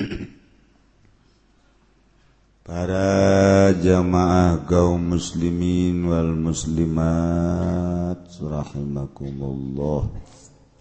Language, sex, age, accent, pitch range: Indonesian, male, 50-69, native, 65-80 Hz